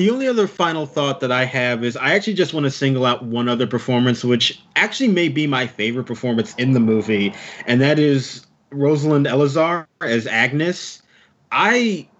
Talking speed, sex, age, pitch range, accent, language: 180 wpm, male, 30-49, 125-160 Hz, American, English